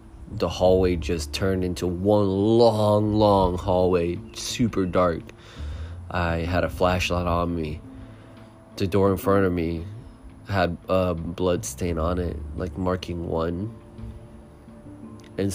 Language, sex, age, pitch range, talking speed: English, male, 20-39, 85-105 Hz, 125 wpm